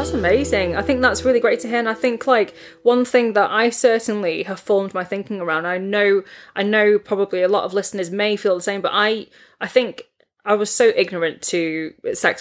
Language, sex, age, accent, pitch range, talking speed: English, female, 20-39, British, 175-215 Hz, 225 wpm